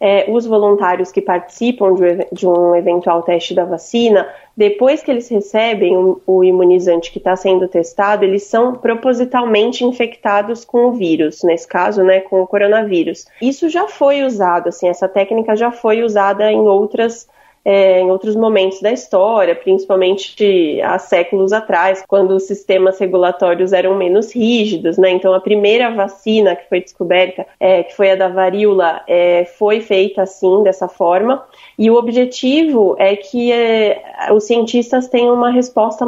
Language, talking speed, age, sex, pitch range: Portuguese, 155 wpm, 30-49, female, 185-240 Hz